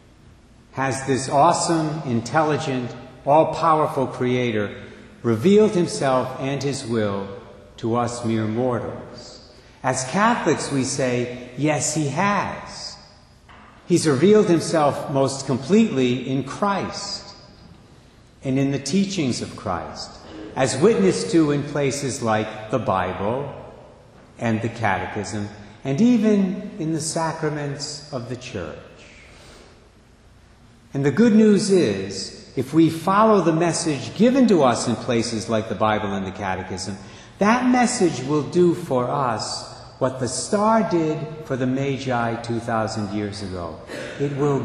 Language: English